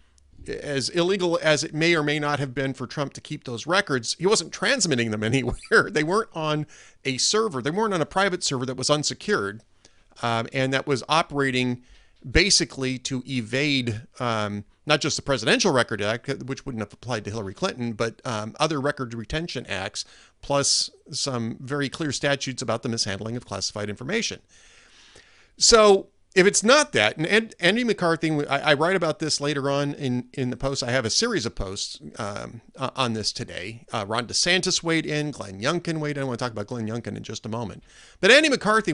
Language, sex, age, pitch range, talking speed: English, male, 40-59, 120-165 Hz, 195 wpm